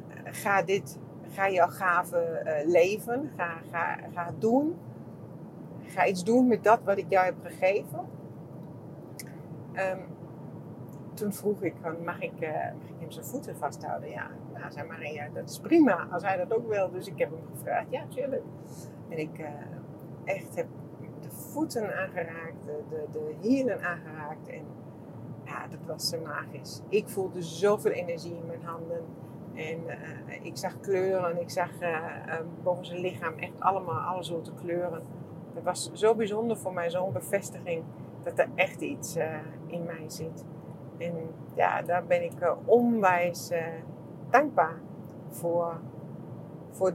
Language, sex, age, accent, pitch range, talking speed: English, female, 40-59, Dutch, 160-185 Hz, 160 wpm